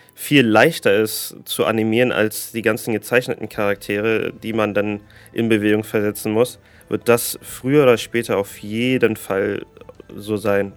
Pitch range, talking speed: 105-120 Hz, 150 wpm